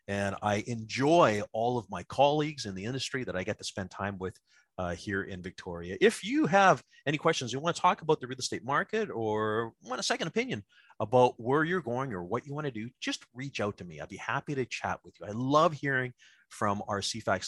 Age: 30-49